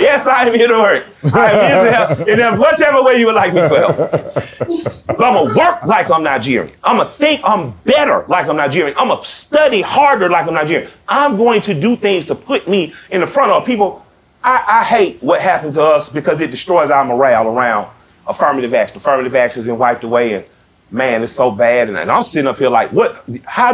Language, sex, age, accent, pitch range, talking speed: English, male, 30-49, American, 140-240 Hz, 220 wpm